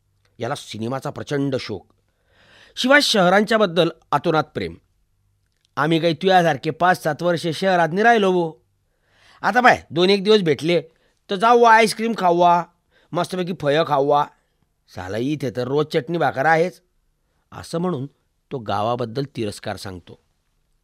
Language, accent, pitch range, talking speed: Marathi, native, 110-180 Hz, 125 wpm